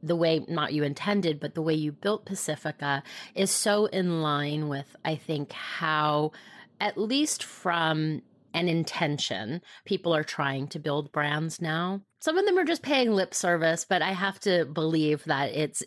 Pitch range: 145-185 Hz